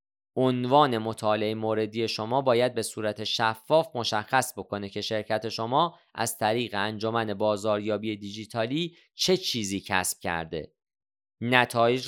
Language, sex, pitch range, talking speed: Persian, male, 105-135 Hz, 115 wpm